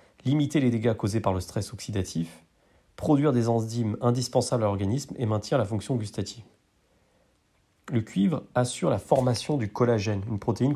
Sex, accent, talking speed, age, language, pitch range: male, French, 155 wpm, 30-49, French, 105-130 Hz